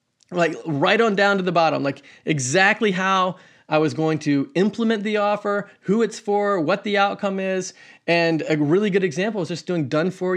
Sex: male